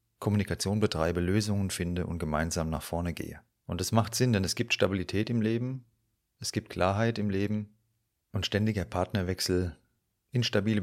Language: German